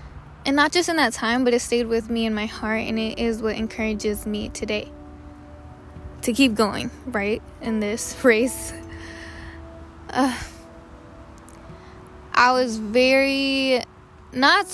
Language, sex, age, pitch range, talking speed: English, female, 10-29, 200-245 Hz, 135 wpm